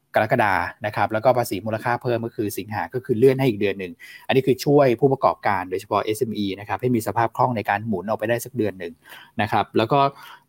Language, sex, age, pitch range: Thai, male, 20-39, 110-135 Hz